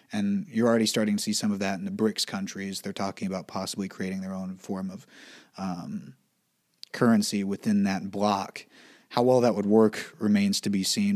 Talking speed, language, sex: 195 wpm, English, male